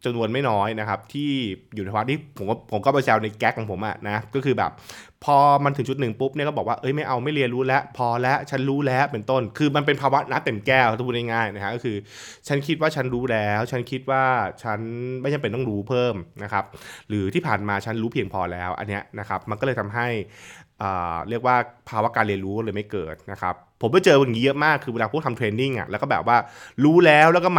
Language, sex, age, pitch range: Thai, male, 20-39, 105-135 Hz